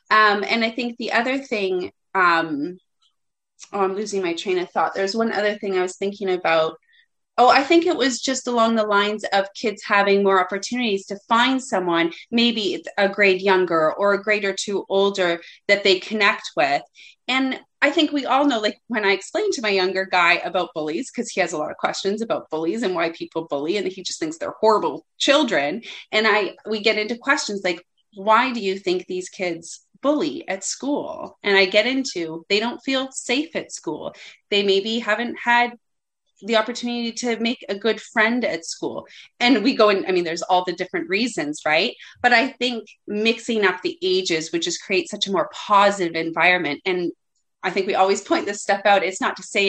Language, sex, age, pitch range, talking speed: English, female, 30-49, 190-260 Hz, 205 wpm